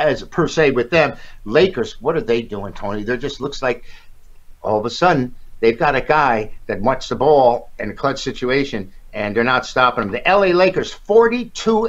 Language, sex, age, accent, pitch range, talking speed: English, male, 60-79, American, 130-185 Hz, 200 wpm